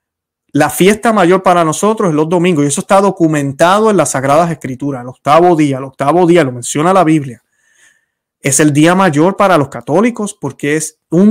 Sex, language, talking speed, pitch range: male, Spanish, 190 wpm, 145-185 Hz